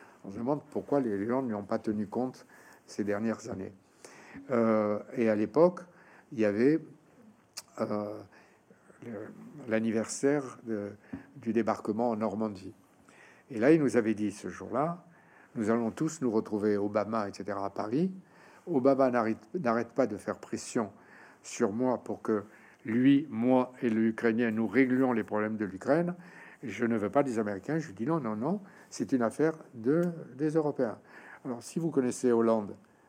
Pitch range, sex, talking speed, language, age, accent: 105-140 Hz, male, 160 wpm, French, 60-79, French